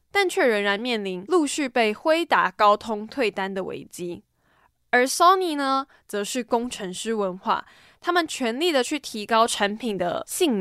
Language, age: Chinese, 20-39